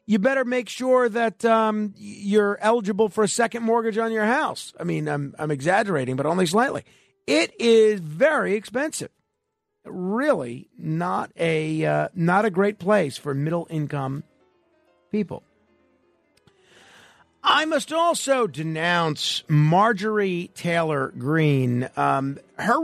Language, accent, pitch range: English, American, 155-220 Hz